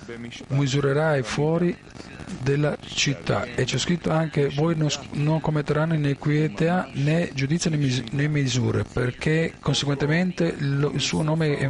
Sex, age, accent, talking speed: male, 40-59, native, 130 wpm